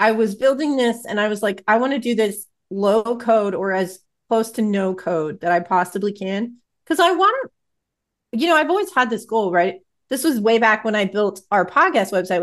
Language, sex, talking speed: English, female, 215 wpm